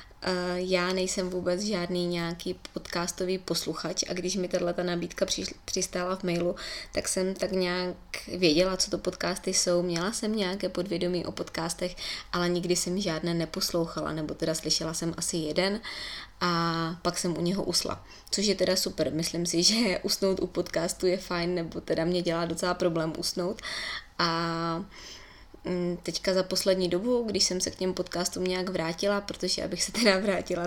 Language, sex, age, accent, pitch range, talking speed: Czech, female, 20-39, native, 175-190 Hz, 165 wpm